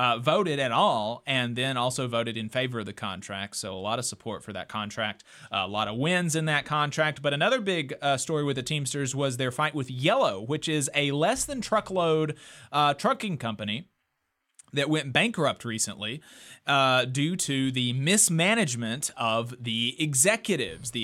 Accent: American